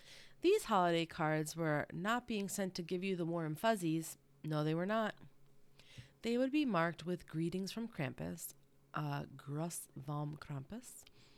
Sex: female